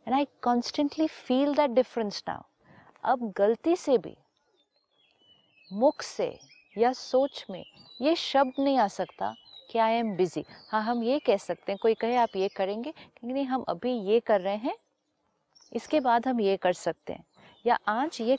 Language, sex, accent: Hindi, female, native